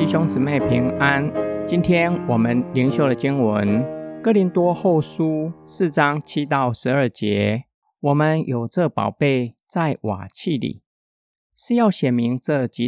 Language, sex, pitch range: Chinese, male, 115-165 Hz